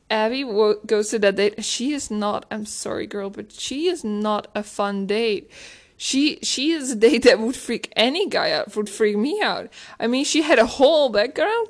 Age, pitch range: 20-39, 225-305 Hz